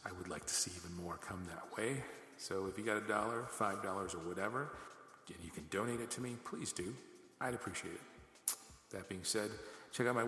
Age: 40-59